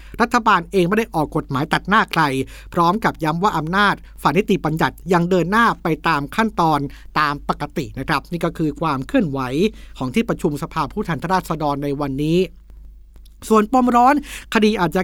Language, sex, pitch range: Thai, male, 155-200 Hz